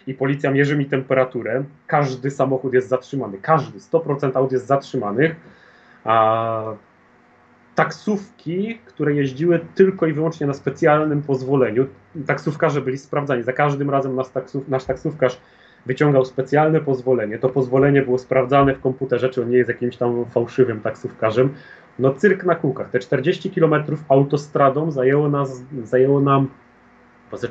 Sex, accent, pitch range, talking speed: male, native, 125-145 Hz, 135 wpm